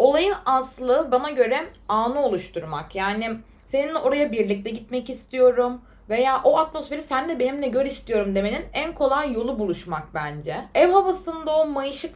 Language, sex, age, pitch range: Turkish, female, 20-39, 215-295 Hz